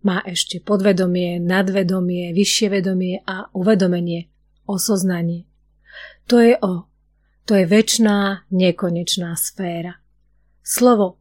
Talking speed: 95 wpm